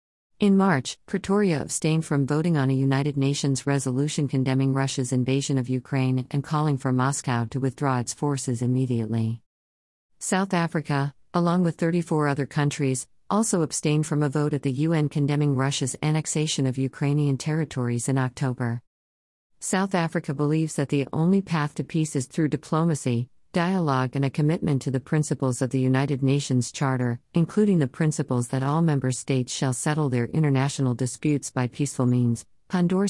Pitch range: 130-160 Hz